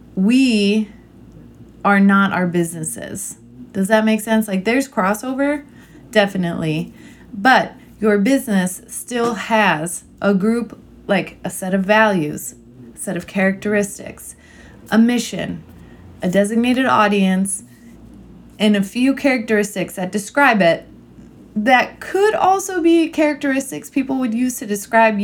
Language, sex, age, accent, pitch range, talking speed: English, female, 20-39, American, 180-225 Hz, 120 wpm